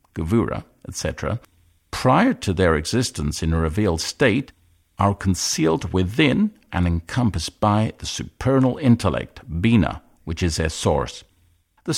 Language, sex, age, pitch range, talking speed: English, male, 50-69, 85-105 Hz, 125 wpm